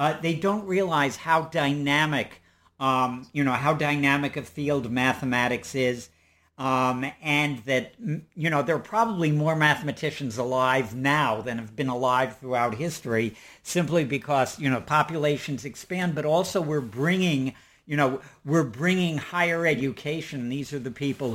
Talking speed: 150 wpm